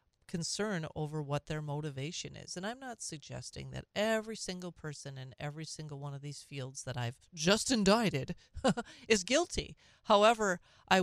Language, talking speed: English, 160 wpm